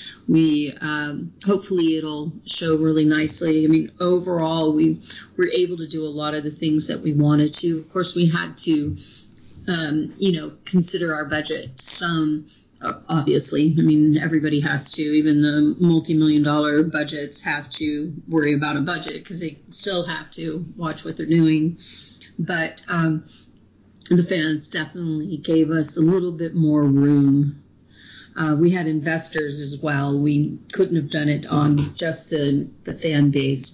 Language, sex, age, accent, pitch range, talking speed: English, female, 30-49, American, 150-165 Hz, 165 wpm